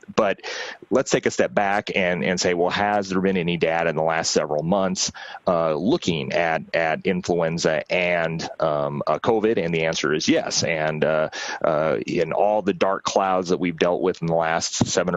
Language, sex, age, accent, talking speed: Italian, male, 30-49, American, 200 wpm